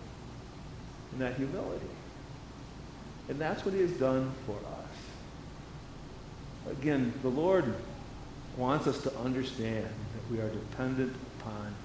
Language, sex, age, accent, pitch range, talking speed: English, male, 50-69, American, 125-160 Hz, 115 wpm